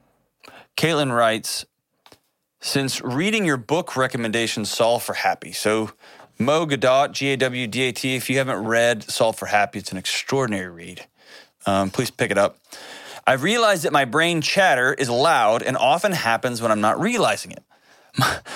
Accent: American